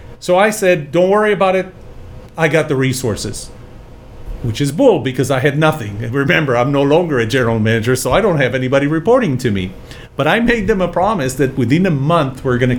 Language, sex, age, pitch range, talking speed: English, male, 40-59, 120-165 Hz, 215 wpm